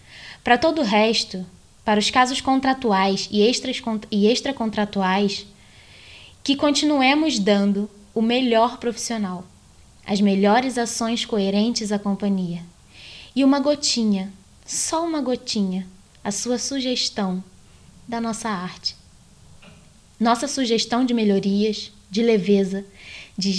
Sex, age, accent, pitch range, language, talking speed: female, 10-29, Brazilian, 195-230 Hz, Portuguese, 110 wpm